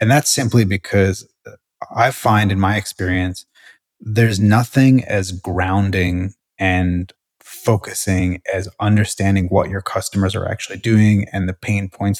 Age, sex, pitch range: 30-49, male, 95-110 Hz